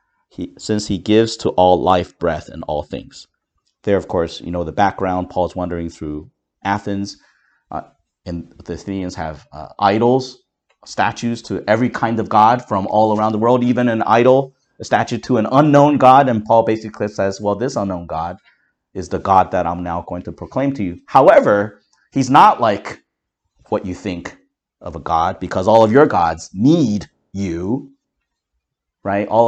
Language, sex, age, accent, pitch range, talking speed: English, male, 30-49, American, 90-115 Hz, 175 wpm